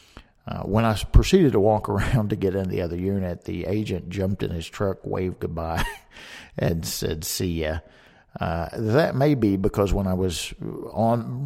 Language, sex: English, male